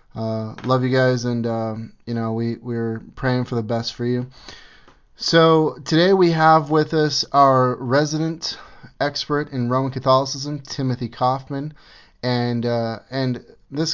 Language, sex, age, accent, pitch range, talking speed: English, male, 30-49, American, 115-130 Hz, 145 wpm